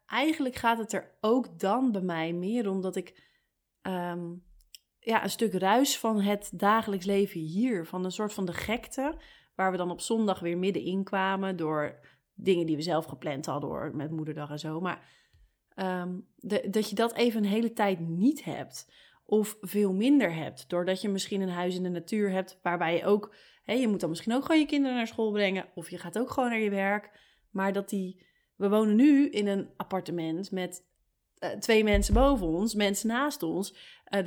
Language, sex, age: Dutch, female, 30-49